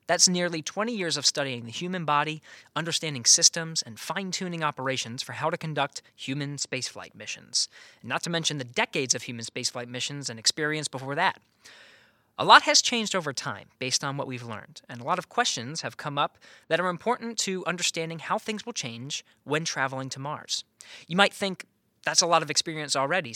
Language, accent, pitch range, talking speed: English, American, 130-175 Hz, 195 wpm